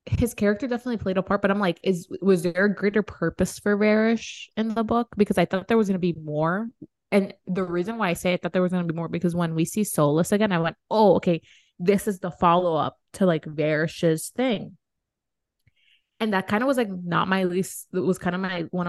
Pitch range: 170-200 Hz